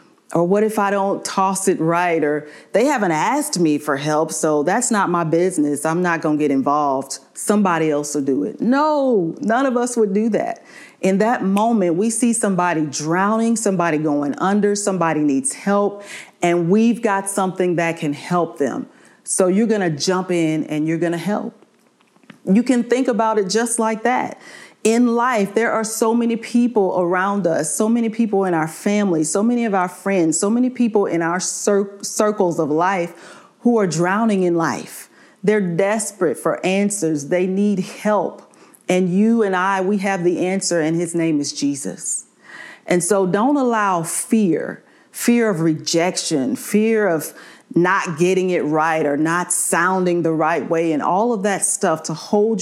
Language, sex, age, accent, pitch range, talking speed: English, female, 40-59, American, 165-215 Hz, 180 wpm